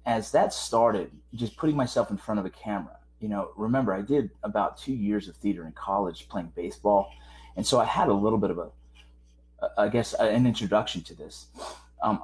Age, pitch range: 30-49, 95-125 Hz